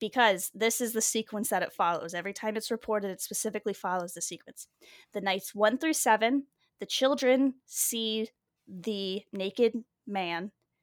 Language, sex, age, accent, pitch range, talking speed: English, female, 10-29, American, 185-225 Hz, 155 wpm